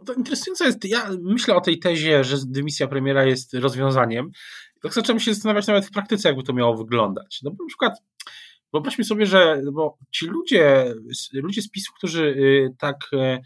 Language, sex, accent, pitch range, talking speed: Polish, male, native, 140-195 Hz, 175 wpm